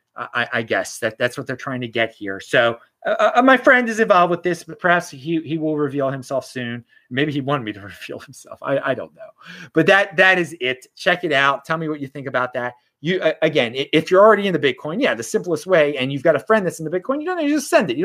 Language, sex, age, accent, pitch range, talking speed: English, male, 30-49, American, 130-170 Hz, 275 wpm